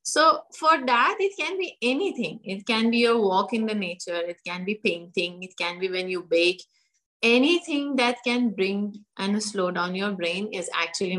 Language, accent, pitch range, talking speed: English, Indian, 200-280 Hz, 195 wpm